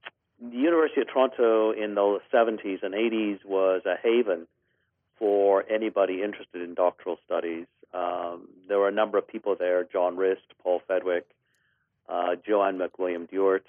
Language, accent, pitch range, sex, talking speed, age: English, American, 90-115 Hz, male, 145 wpm, 50-69